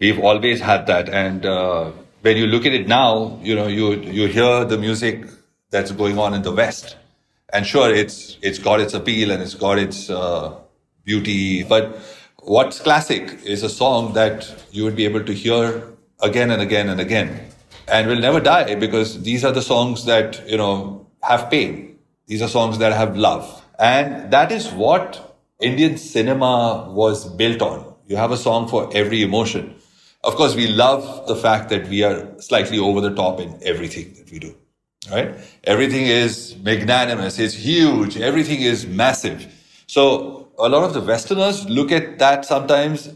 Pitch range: 105-130 Hz